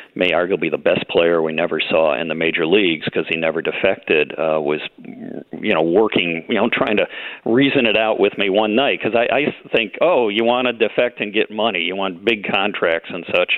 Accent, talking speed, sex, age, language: American, 220 wpm, male, 50-69, English